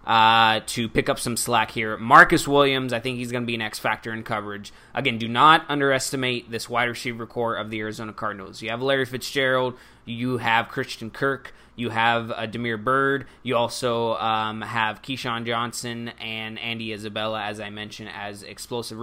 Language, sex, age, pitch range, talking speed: English, male, 20-39, 110-130 Hz, 180 wpm